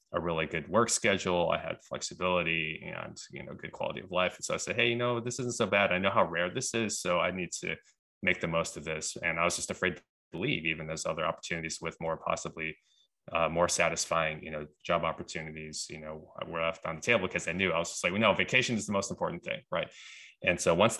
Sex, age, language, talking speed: male, 20-39, English, 250 wpm